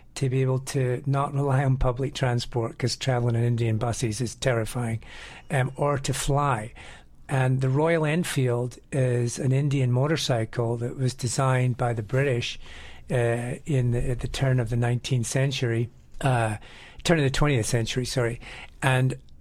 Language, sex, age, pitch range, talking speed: English, male, 50-69, 125-135 Hz, 160 wpm